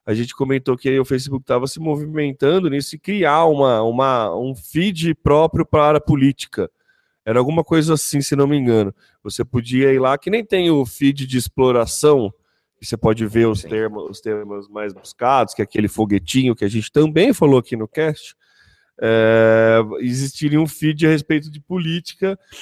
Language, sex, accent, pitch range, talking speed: Portuguese, male, Brazilian, 120-175 Hz, 185 wpm